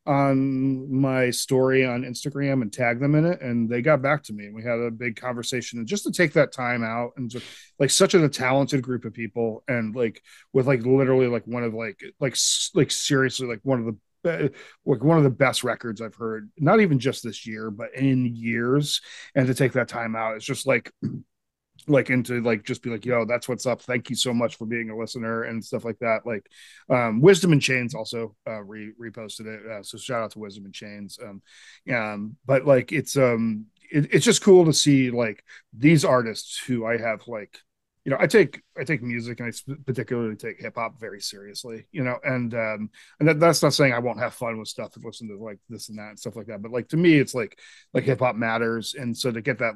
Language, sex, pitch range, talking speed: English, male, 110-135 Hz, 235 wpm